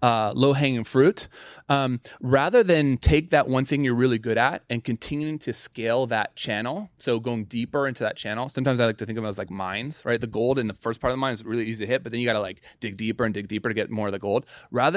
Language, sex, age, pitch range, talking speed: English, male, 30-49, 115-145 Hz, 275 wpm